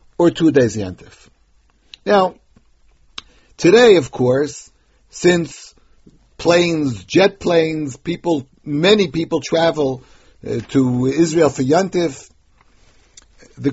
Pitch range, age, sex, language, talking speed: 135-175 Hz, 50-69, male, English, 90 wpm